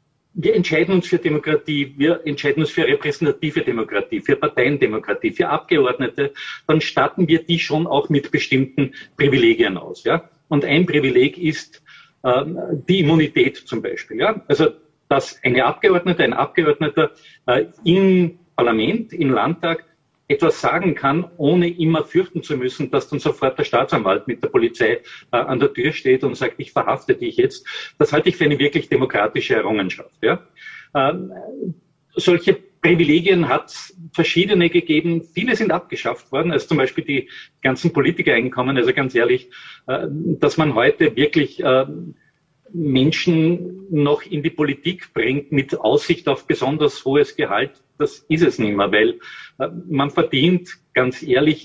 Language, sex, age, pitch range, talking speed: German, male, 40-59, 145-185 Hz, 150 wpm